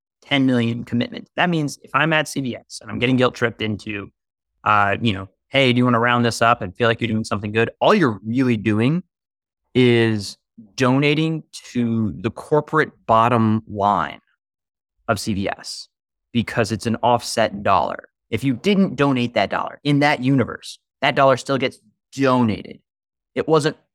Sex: male